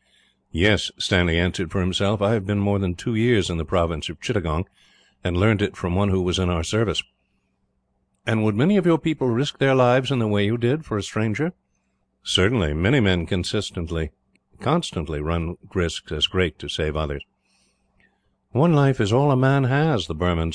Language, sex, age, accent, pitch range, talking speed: English, male, 50-69, American, 90-130 Hz, 190 wpm